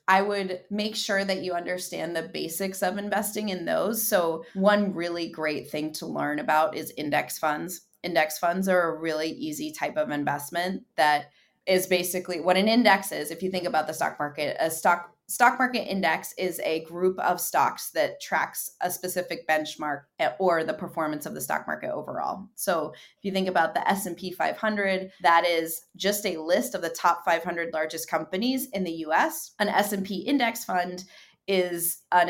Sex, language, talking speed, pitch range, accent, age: female, English, 180 wpm, 165-205 Hz, American, 20-39